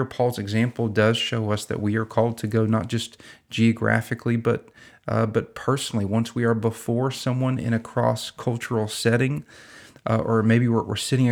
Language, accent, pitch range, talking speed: English, American, 105-120 Hz, 175 wpm